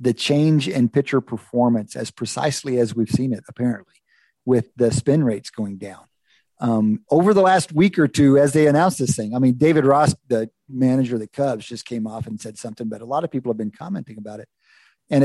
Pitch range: 115-155 Hz